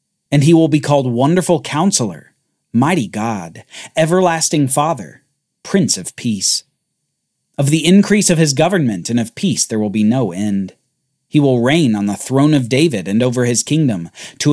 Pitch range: 120-170 Hz